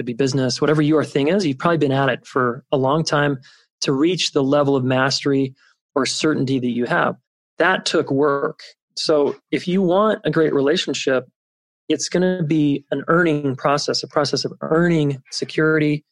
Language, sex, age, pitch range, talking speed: English, male, 30-49, 135-155 Hz, 180 wpm